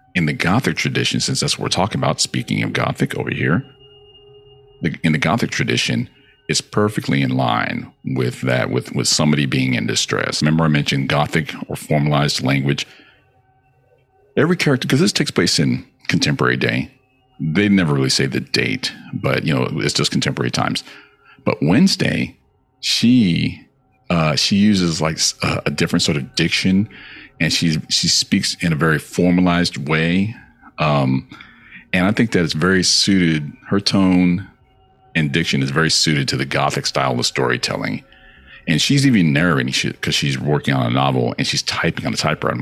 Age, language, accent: 50-69, English, American